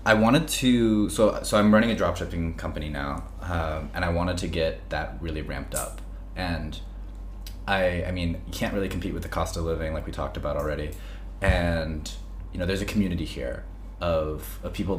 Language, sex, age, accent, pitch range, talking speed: English, male, 20-39, American, 80-95 Hz, 195 wpm